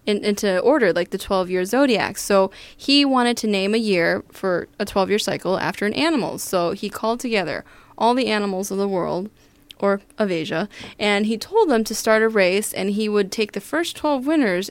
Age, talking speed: 20-39, 200 wpm